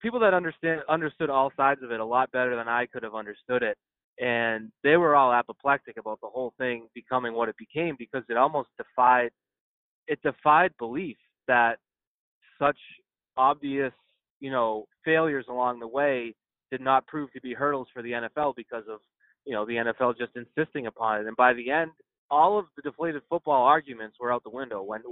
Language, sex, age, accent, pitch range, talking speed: English, male, 20-39, American, 120-140 Hz, 190 wpm